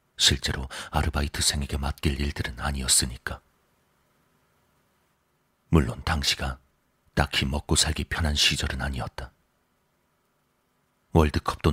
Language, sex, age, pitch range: Korean, male, 40-59, 70-80 Hz